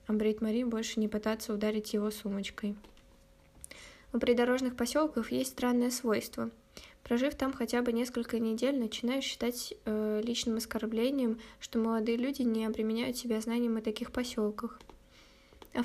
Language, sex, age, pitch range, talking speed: Russian, female, 10-29, 215-245 Hz, 135 wpm